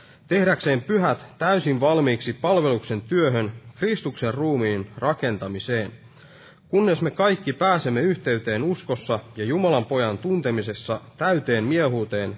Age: 30-49